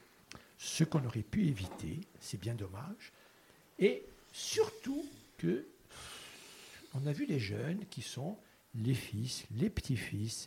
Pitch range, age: 125-155 Hz, 60-79